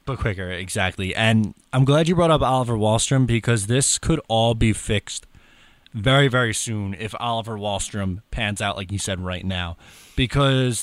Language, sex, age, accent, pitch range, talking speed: English, male, 20-39, American, 100-140 Hz, 170 wpm